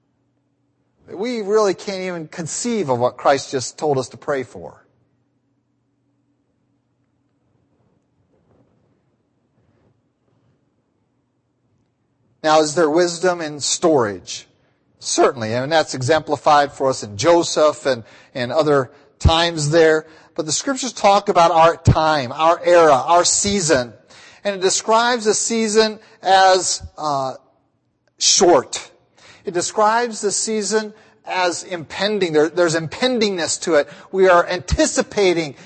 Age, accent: 40-59, American